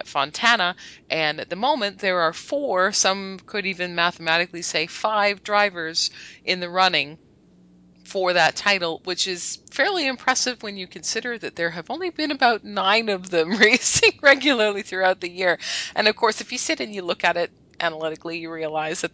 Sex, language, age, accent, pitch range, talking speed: female, English, 30-49, American, 150-195 Hz, 180 wpm